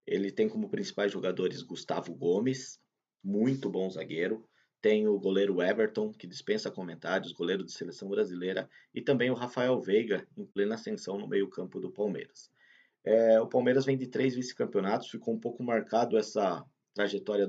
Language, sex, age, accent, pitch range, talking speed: Portuguese, male, 20-39, Brazilian, 100-125 Hz, 155 wpm